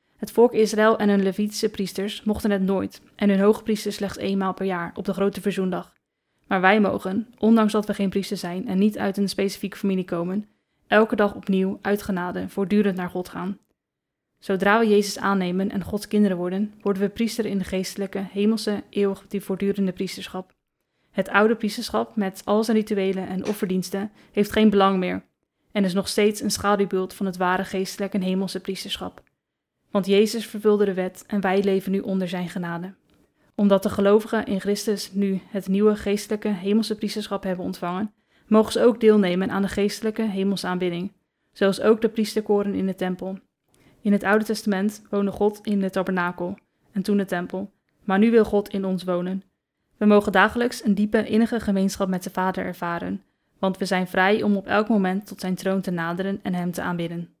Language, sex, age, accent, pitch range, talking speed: Dutch, female, 20-39, Dutch, 190-210 Hz, 190 wpm